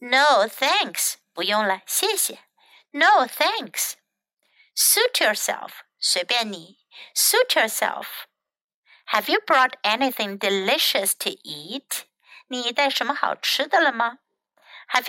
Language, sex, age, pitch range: Chinese, female, 60-79, 240-340 Hz